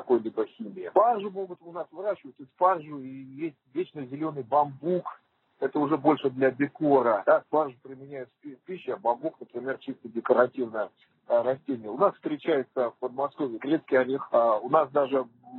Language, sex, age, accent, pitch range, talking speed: Russian, male, 40-59, native, 130-155 Hz, 160 wpm